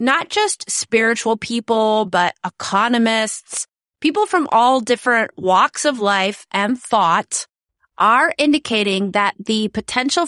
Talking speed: 115 wpm